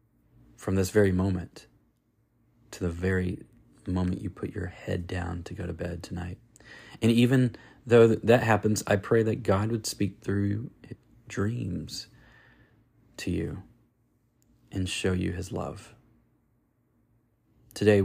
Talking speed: 130 wpm